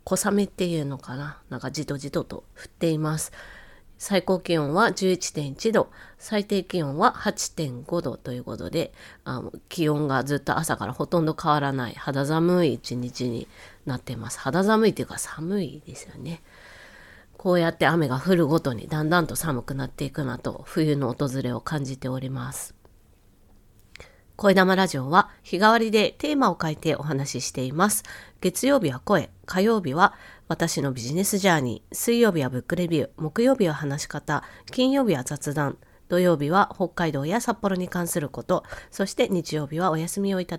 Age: 30-49